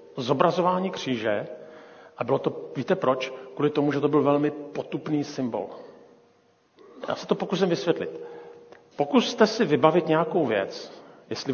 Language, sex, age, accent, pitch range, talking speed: Czech, male, 40-59, native, 130-170 Hz, 135 wpm